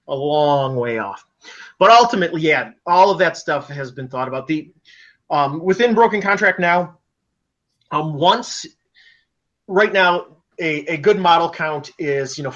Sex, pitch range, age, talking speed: male, 140-175 Hz, 30-49, 160 wpm